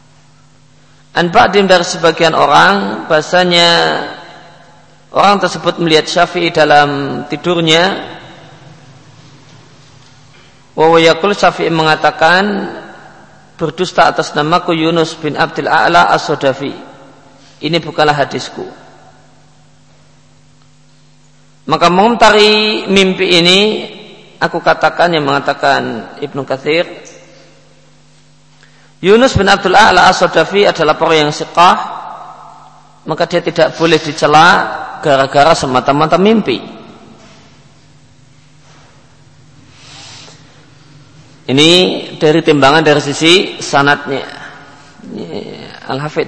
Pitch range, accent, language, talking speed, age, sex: 140-170 Hz, native, Indonesian, 75 wpm, 50-69, male